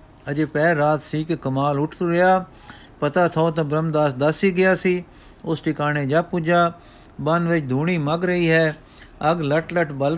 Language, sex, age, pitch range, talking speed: Punjabi, male, 50-69, 140-170 Hz, 165 wpm